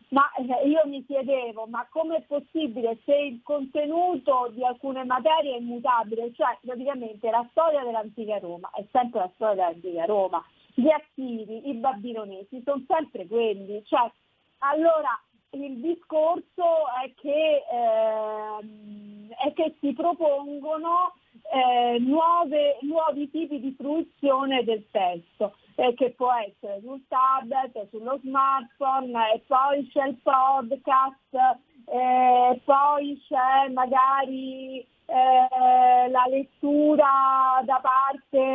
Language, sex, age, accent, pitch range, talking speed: Italian, female, 40-59, native, 240-290 Hz, 115 wpm